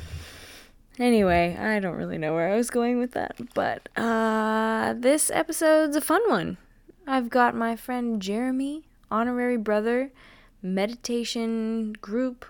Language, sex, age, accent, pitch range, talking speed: English, female, 10-29, American, 205-260 Hz, 130 wpm